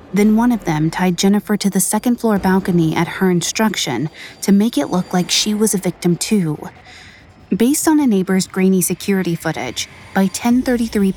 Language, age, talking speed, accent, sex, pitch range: English, 30-49, 175 wpm, American, female, 175-220 Hz